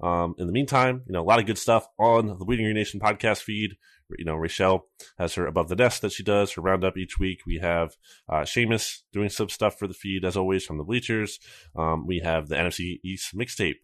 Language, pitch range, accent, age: English, 85-110 Hz, American, 20-39